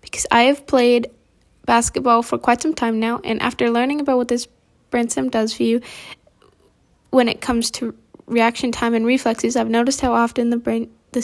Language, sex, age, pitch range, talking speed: English, female, 10-29, 225-250 Hz, 185 wpm